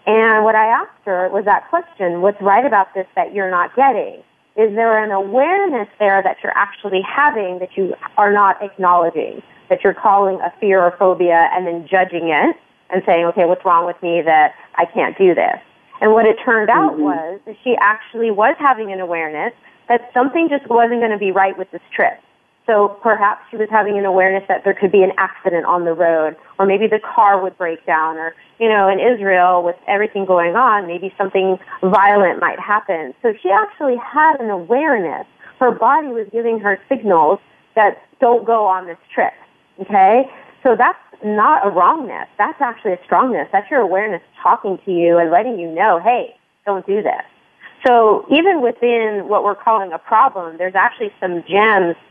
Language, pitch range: English, 185-230 Hz